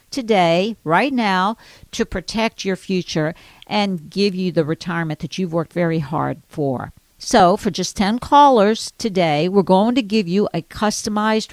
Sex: female